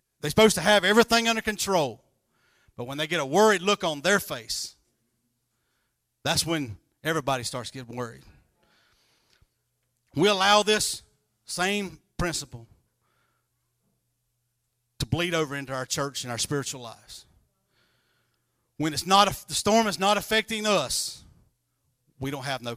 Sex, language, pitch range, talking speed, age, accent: male, English, 120-185 Hz, 135 wpm, 40-59, American